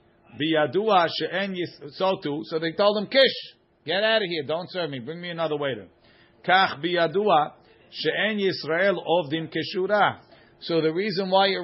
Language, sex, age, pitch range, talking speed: English, male, 50-69, 145-190 Hz, 110 wpm